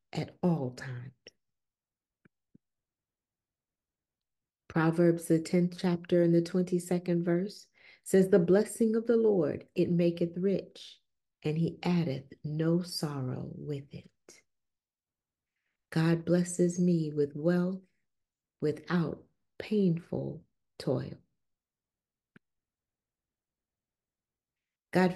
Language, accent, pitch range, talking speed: English, American, 150-185 Hz, 85 wpm